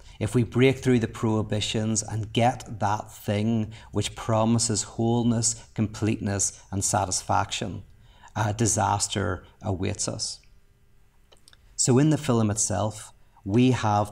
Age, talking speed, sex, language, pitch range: 40-59, 115 wpm, male, English, 100-115 Hz